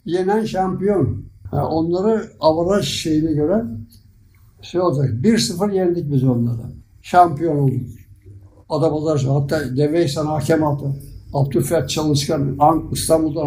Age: 60-79